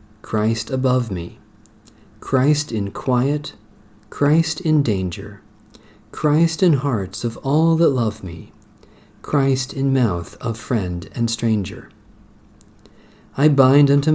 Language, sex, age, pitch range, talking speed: English, male, 50-69, 105-140 Hz, 115 wpm